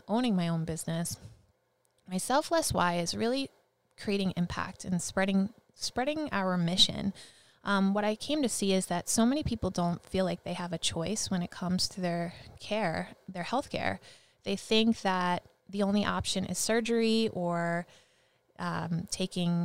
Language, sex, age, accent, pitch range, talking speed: English, female, 20-39, American, 180-215 Hz, 160 wpm